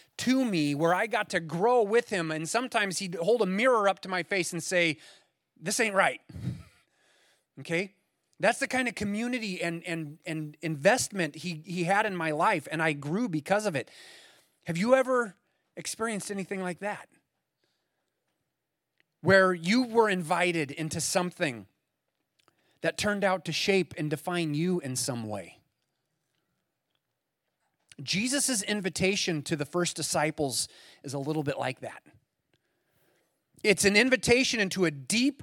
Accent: American